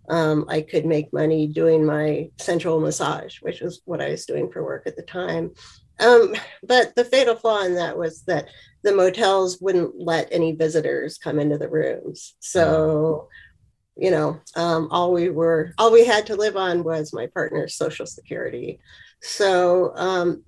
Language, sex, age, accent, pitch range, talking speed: English, female, 40-59, American, 160-220 Hz, 175 wpm